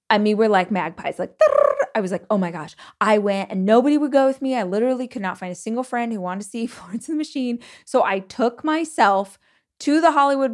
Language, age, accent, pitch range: English, 20-39, American, 195-235 Hz